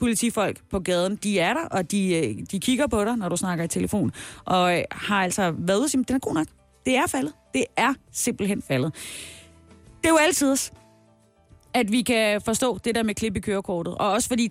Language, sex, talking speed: Danish, female, 205 wpm